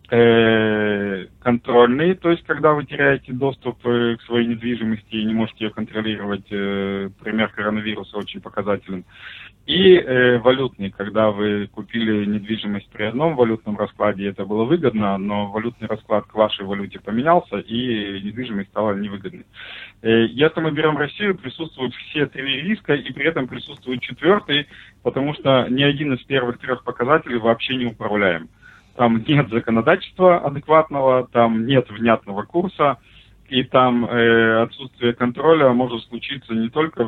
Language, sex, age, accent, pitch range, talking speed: Russian, male, 20-39, native, 105-135 Hz, 135 wpm